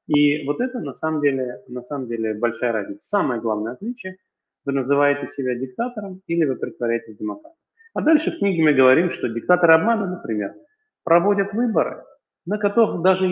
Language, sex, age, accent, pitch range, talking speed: Russian, male, 30-49, native, 125-180 Hz, 170 wpm